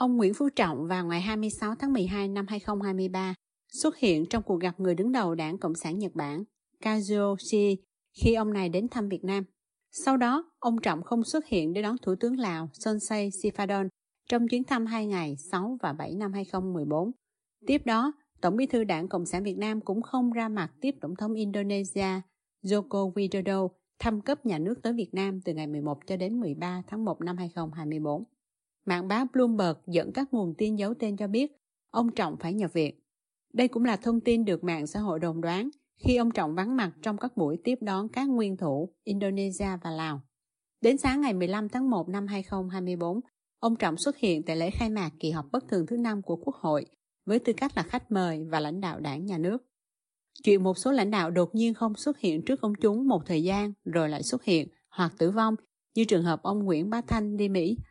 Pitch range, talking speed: 175-230 Hz, 210 wpm